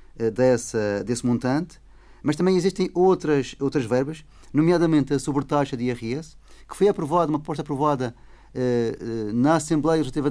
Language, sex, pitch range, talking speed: Portuguese, male, 125-150 Hz, 135 wpm